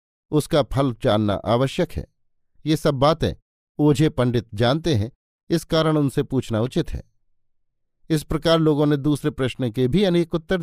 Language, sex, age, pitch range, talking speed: Hindi, male, 50-69, 115-155 Hz, 160 wpm